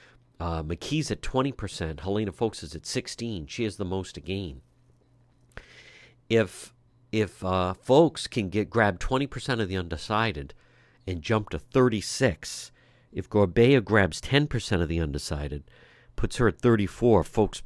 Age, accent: 50-69, American